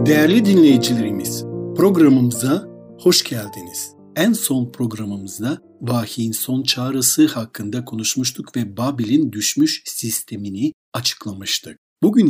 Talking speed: 95 wpm